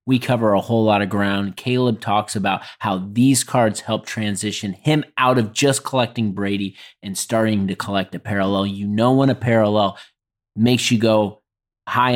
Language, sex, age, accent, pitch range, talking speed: English, male, 30-49, American, 105-125 Hz, 180 wpm